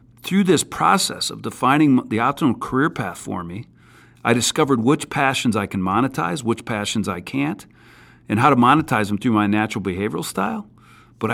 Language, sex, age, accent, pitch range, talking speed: English, male, 40-59, American, 110-150 Hz, 175 wpm